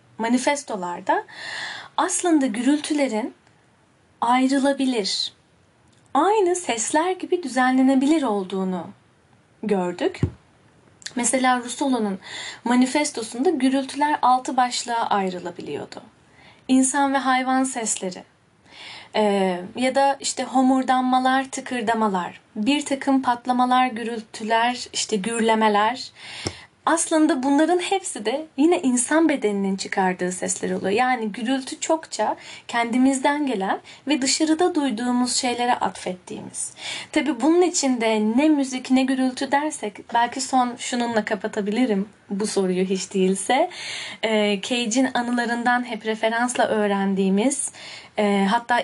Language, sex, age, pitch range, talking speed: Turkish, female, 10-29, 215-275 Hz, 95 wpm